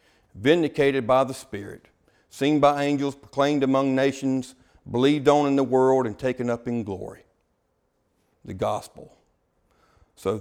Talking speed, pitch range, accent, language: 135 wpm, 110-130 Hz, American, English